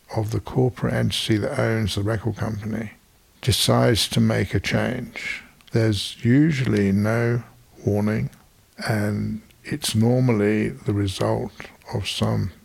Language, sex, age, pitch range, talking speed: English, male, 60-79, 100-115 Hz, 120 wpm